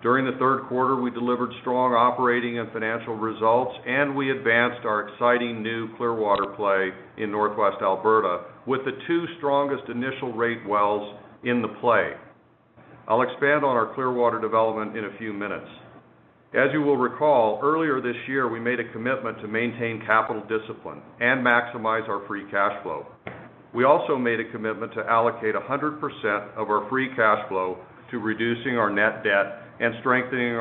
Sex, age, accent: male, 50-69, American